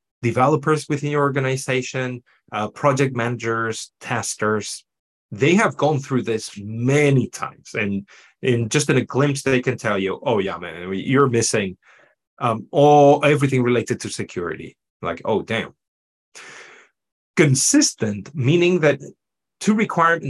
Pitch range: 125-165 Hz